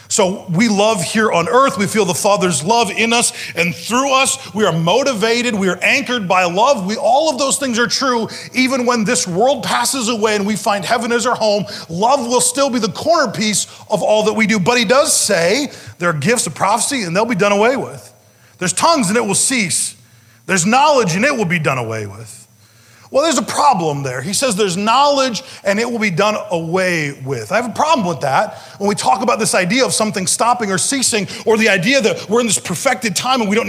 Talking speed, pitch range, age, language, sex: 230 wpm, 170-235 Hz, 30-49, English, male